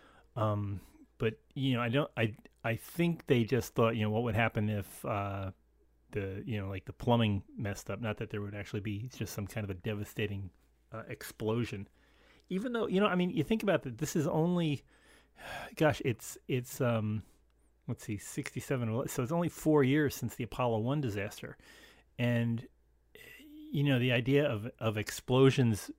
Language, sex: English, male